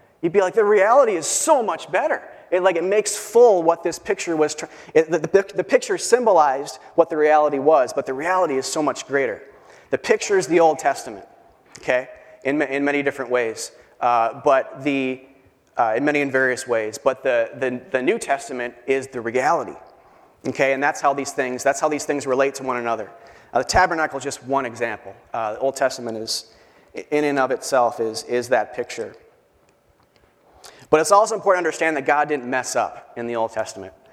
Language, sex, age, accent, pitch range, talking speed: English, male, 30-49, American, 130-190 Hz, 205 wpm